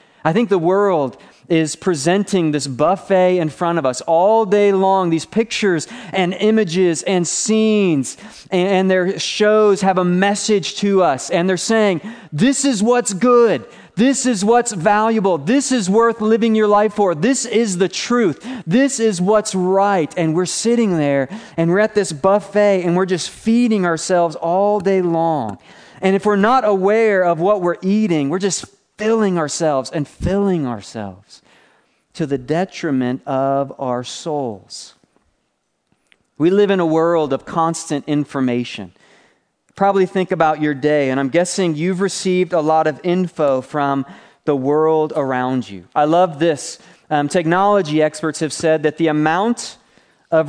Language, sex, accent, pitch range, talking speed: English, male, American, 160-205 Hz, 160 wpm